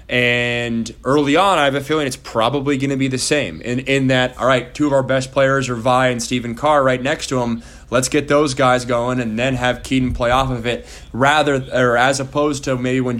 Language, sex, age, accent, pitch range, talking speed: English, male, 20-39, American, 125-140 Hz, 240 wpm